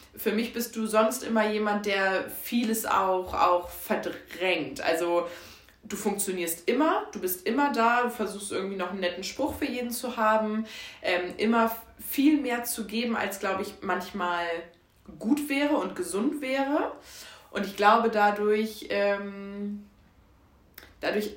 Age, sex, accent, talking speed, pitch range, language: 20-39, female, German, 145 wpm, 170-220 Hz, German